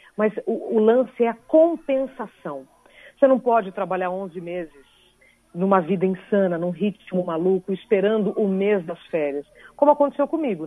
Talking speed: 150 wpm